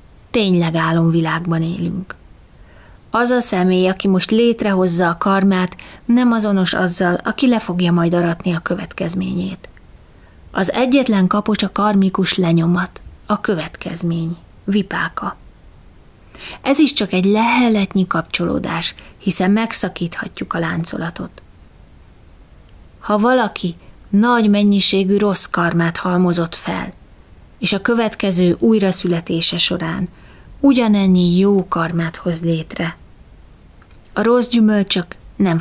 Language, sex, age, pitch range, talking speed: Hungarian, female, 30-49, 170-210 Hz, 105 wpm